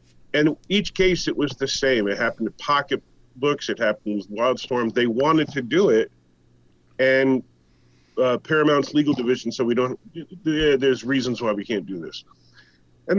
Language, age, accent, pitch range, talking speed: English, 40-59, American, 115-155 Hz, 170 wpm